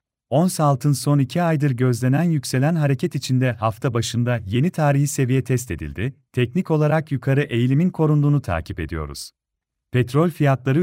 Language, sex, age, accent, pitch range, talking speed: Turkish, male, 40-59, native, 120-155 Hz, 140 wpm